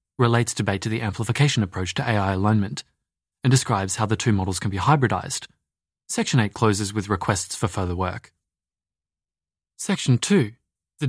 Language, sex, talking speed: English, male, 155 wpm